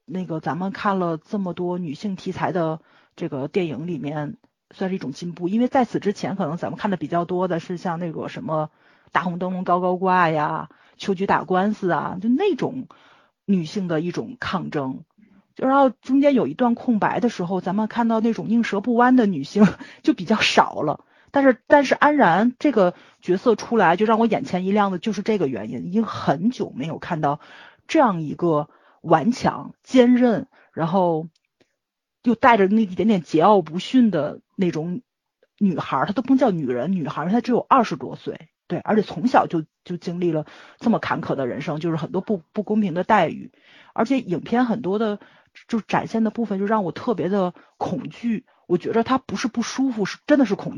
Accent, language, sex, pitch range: native, Chinese, female, 175-235 Hz